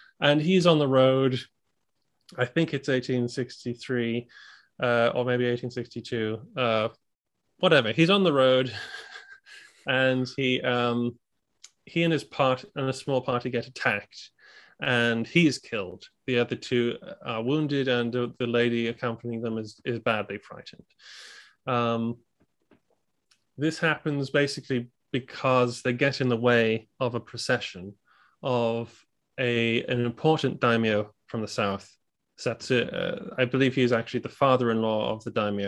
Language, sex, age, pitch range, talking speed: English, male, 30-49, 115-135 Hz, 140 wpm